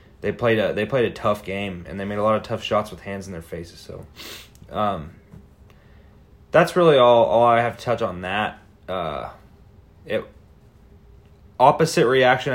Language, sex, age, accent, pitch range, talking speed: English, male, 20-39, American, 100-115 Hz, 175 wpm